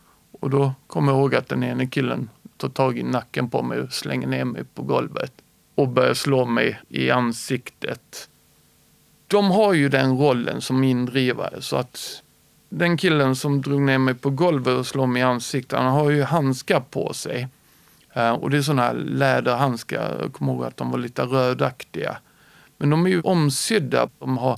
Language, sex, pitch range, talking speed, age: Swedish, male, 130-155 Hz, 185 wpm, 50-69